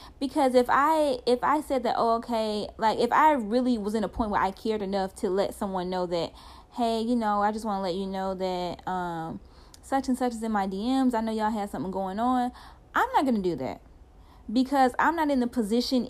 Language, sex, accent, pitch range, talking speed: English, female, American, 200-260 Hz, 240 wpm